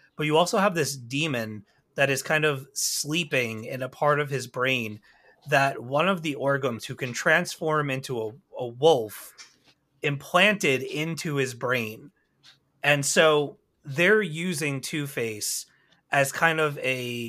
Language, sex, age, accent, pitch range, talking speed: English, male, 30-49, American, 120-150 Hz, 145 wpm